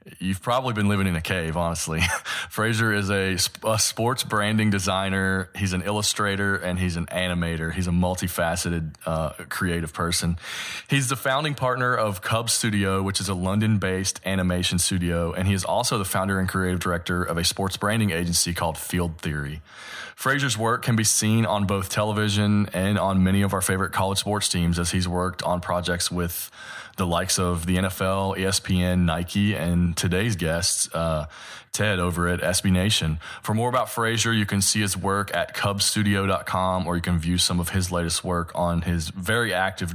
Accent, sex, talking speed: American, male, 180 wpm